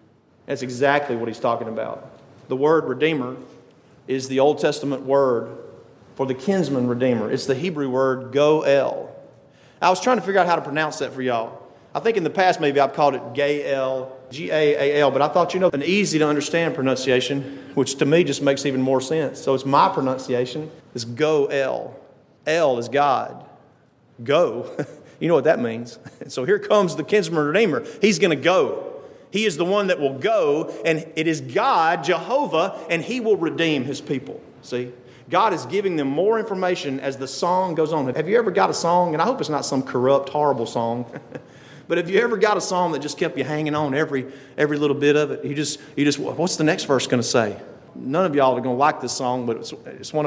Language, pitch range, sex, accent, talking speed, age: English, 130-165 Hz, male, American, 210 wpm, 40-59